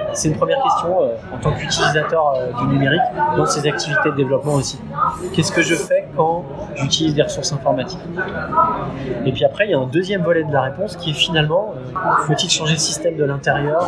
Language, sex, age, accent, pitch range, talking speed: French, male, 20-39, French, 135-160 Hz, 210 wpm